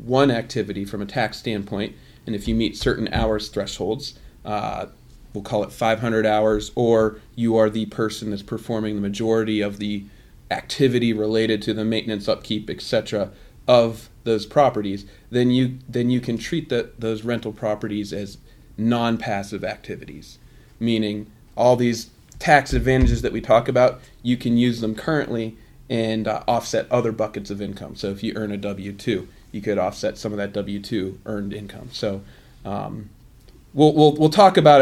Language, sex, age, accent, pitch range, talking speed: English, male, 30-49, American, 105-125 Hz, 165 wpm